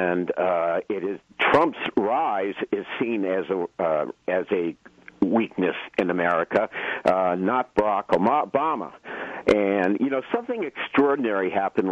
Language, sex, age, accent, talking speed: English, male, 50-69, American, 130 wpm